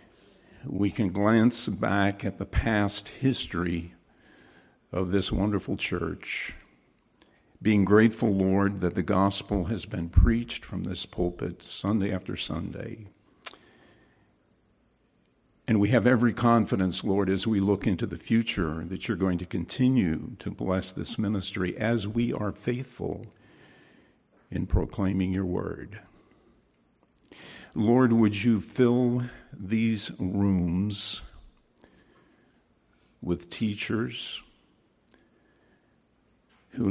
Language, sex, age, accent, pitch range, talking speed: English, male, 50-69, American, 95-110 Hz, 105 wpm